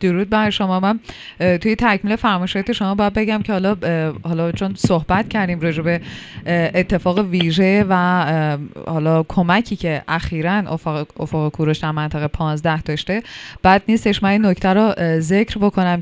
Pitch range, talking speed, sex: 165-195 Hz, 135 wpm, female